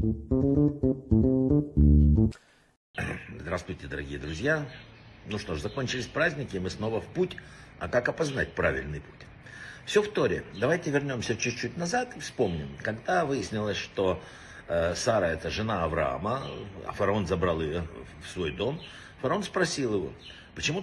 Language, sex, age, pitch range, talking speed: Russian, male, 60-79, 100-150 Hz, 135 wpm